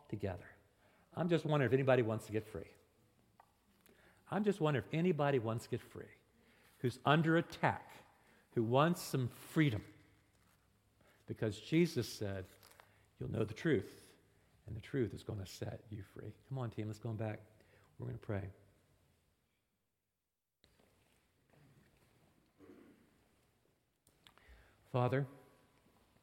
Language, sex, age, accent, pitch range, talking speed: English, male, 50-69, American, 105-135 Hz, 120 wpm